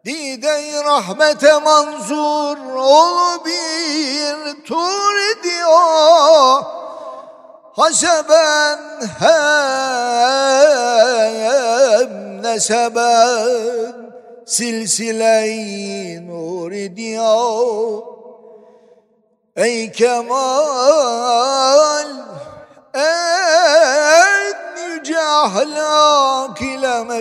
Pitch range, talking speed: 175-290 Hz, 45 wpm